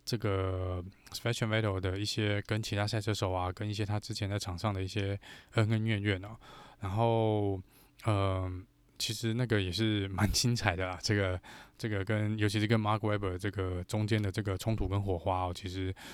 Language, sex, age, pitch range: Chinese, male, 20-39, 100-125 Hz